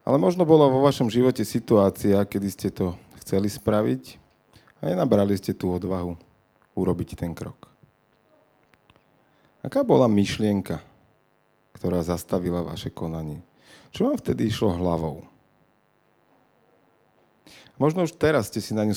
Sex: male